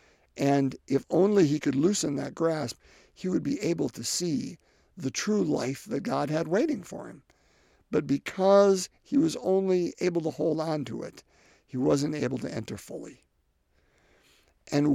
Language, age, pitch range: English, 50-69, 130-180 Hz